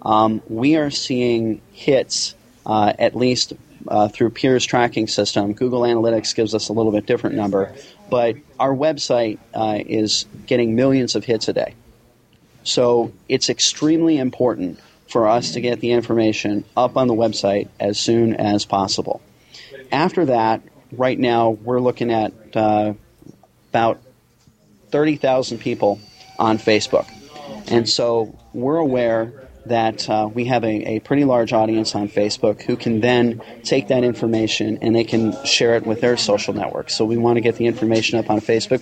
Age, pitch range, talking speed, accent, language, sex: 30-49, 110-125 Hz, 160 wpm, American, English, male